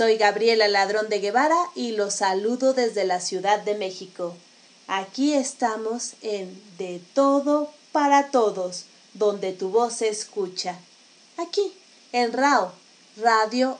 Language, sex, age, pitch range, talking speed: Spanish, female, 30-49, 195-260 Hz, 125 wpm